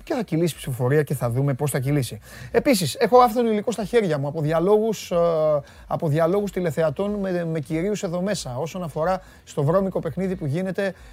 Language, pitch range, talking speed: Greek, 125-175 Hz, 180 wpm